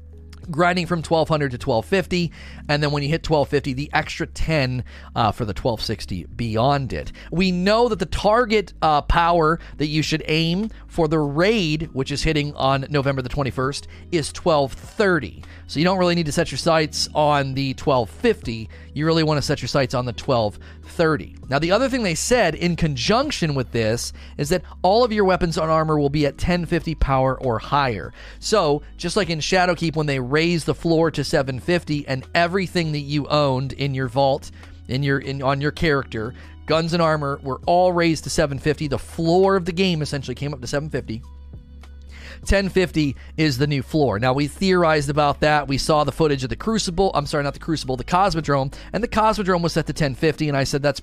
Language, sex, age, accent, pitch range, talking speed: English, male, 30-49, American, 130-165 Hz, 200 wpm